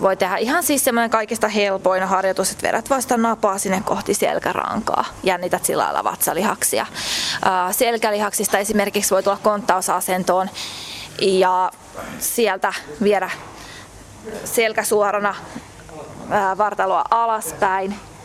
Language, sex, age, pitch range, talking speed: Finnish, female, 20-39, 190-220 Hz, 100 wpm